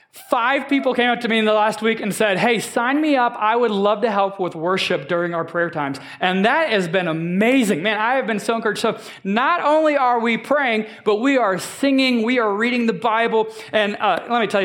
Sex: male